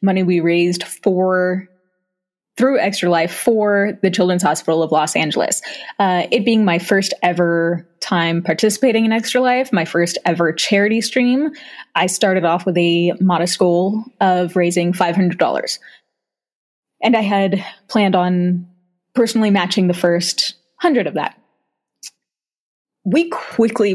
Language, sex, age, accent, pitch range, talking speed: English, female, 20-39, American, 175-215 Hz, 135 wpm